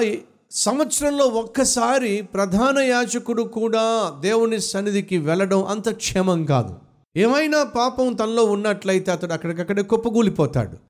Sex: male